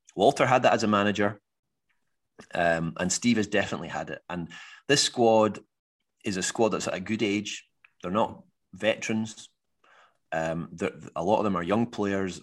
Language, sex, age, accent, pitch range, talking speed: English, male, 30-49, British, 95-115 Hz, 175 wpm